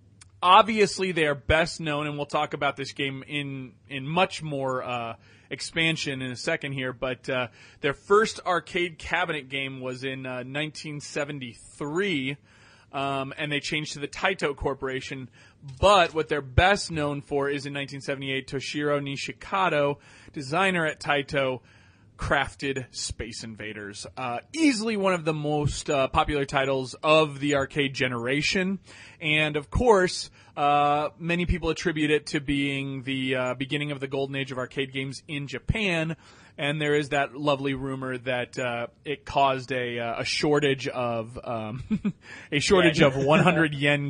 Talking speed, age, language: 155 wpm, 30-49, English